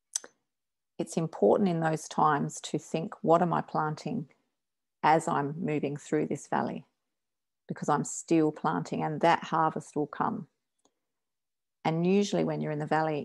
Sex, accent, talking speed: female, Australian, 150 wpm